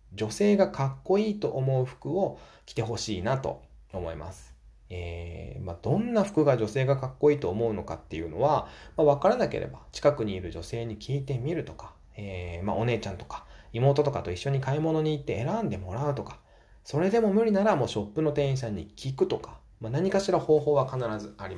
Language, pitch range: Japanese, 95-145 Hz